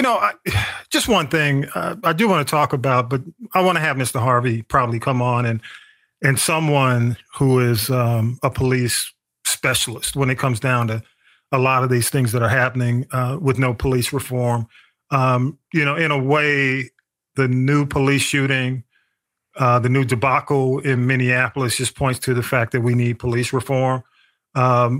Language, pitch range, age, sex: English, 125-140 Hz, 40-59, male